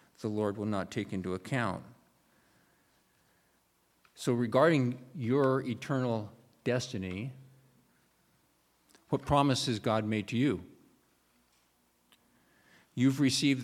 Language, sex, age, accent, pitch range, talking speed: English, male, 50-69, American, 110-130 Hz, 90 wpm